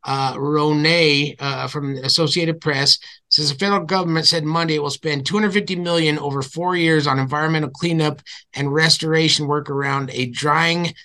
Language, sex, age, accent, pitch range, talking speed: English, male, 30-49, American, 140-160 Hz, 155 wpm